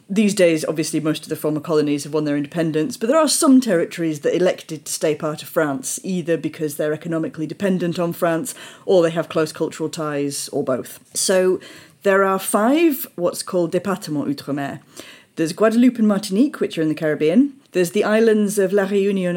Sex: female